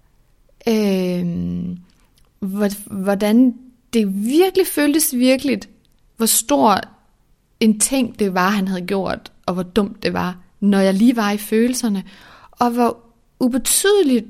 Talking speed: 115 wpm